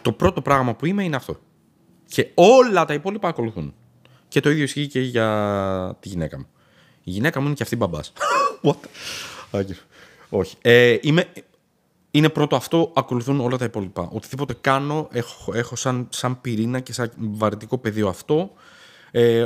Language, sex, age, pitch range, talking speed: Greek, male, 20-39, 110-135 Hz, 165 wpm